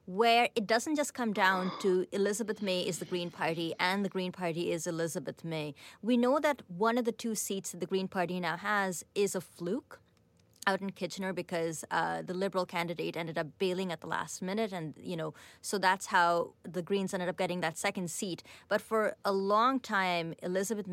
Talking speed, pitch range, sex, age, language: 205 wpm, 175-225 Hz, female, 30-49, English